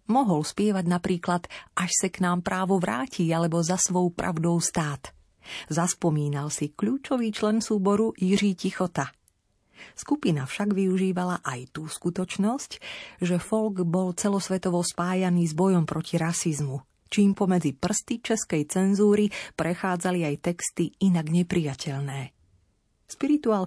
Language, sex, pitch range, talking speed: Slovak, female, 160-200 Hz, 120 wpm